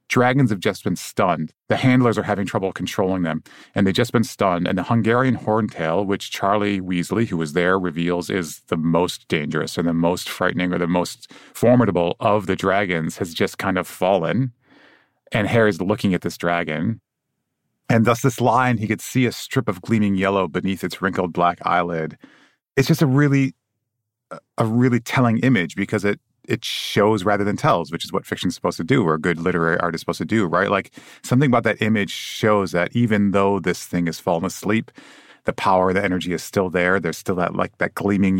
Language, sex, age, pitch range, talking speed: English, male, 30-49, 85-110 Hz, 205 wpm